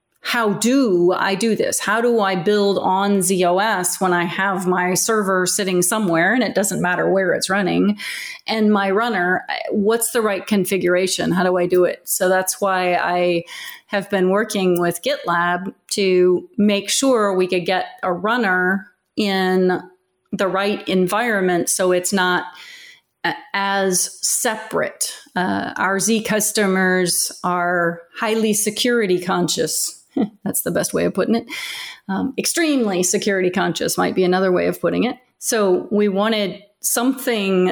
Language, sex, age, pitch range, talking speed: English, female, 30-49, 185-220 Hz, 150 wpm